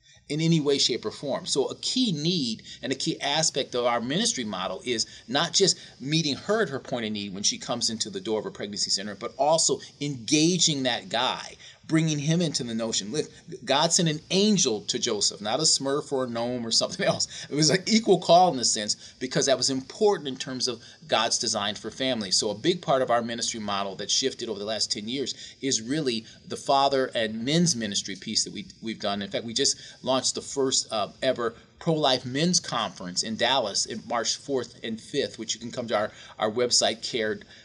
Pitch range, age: 115-150 Hz, 30-49